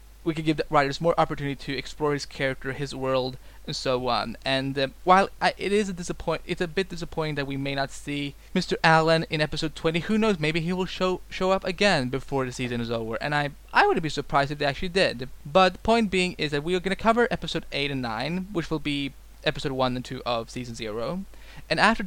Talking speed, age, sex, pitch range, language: 240 wpm, 20-39, male, 130-180 Hz, English